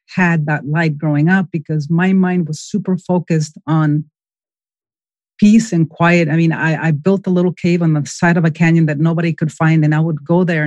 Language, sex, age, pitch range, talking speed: English, female, 30-49, 155-180 Hz, 215 wpm